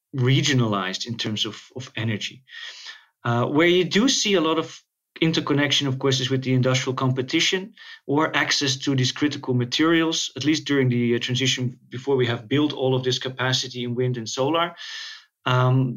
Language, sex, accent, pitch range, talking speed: English, male, Dutch, 115-140 Hz, 175 wpm